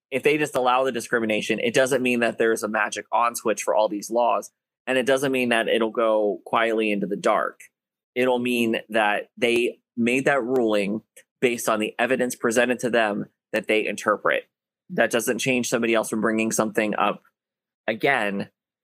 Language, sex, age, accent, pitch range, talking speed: English, male, 20-39, American, 110-125 Hz, 180 wpm